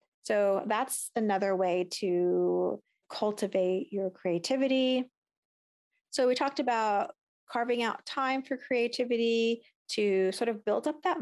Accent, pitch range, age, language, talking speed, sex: American, 200-245 Hz, 30-49, English, 125 wpm, female